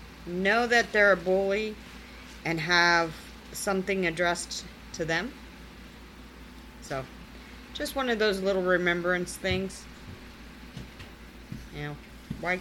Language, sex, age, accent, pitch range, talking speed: English, female, 40-59, American, 160-195 Hz, 105 wpm